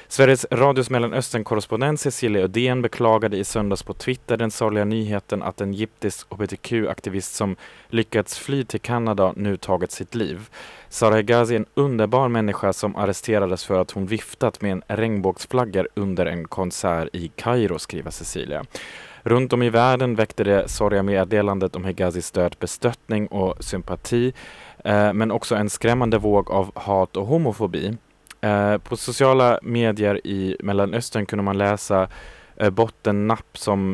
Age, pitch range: 20-39, 95-115 Hz